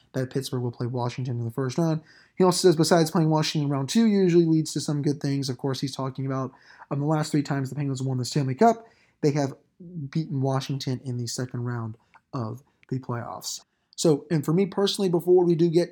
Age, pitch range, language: 20-39, 135-165 Hz, English